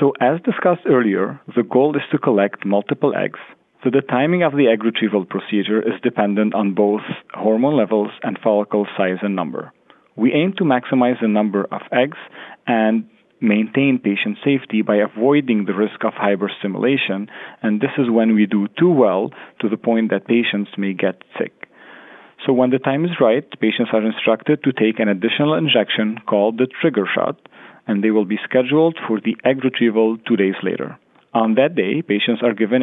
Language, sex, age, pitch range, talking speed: English, male, 40-59, 105-130 Hz, 185 wpm